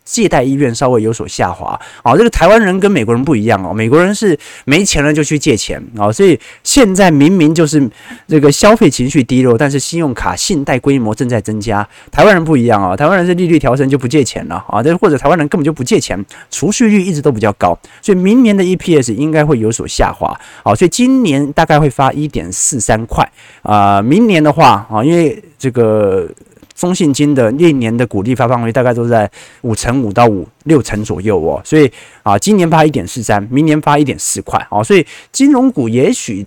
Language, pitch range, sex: Chinese, 120-180 Hz, male